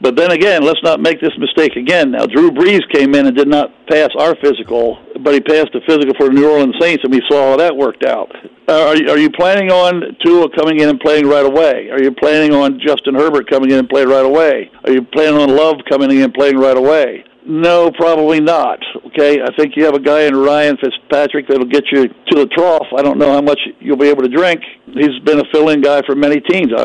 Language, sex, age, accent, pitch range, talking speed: English, male, 60-79, American, 140-165 Hz, 245 wpm